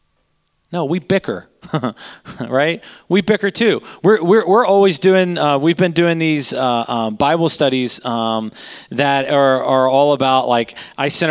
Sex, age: male, 30-49